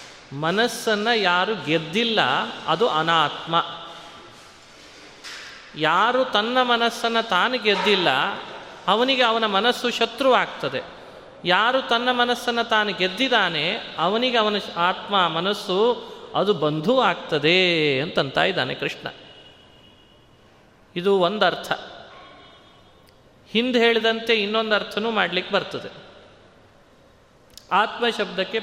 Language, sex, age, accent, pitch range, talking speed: Kannada, male, 30-49, native, 175-230 Hz, 85 wpm